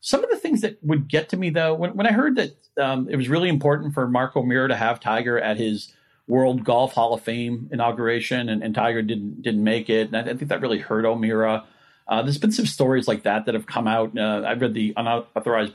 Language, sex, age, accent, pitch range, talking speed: English, male, 40-59, American, 115-145 Hz, 250 wpm